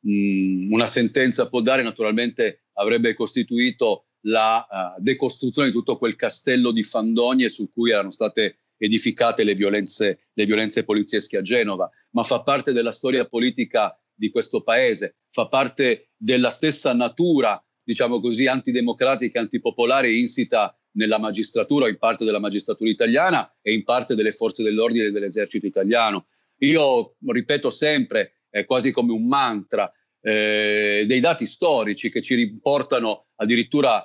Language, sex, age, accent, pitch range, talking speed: Italian, male, 40-59, native, 110-130 Hz, 140 wpm